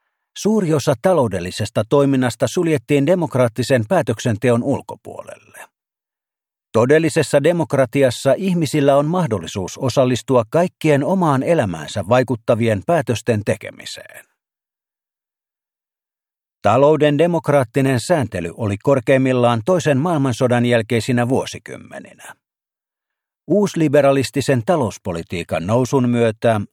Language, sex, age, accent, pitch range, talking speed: Finnish, male, 50-69, native, 120-155 Hz, 75 wpm